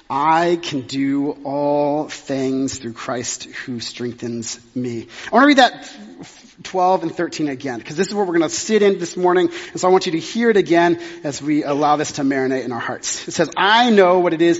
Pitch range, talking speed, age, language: 150-220 Hz, 225 wpm, 30-49, English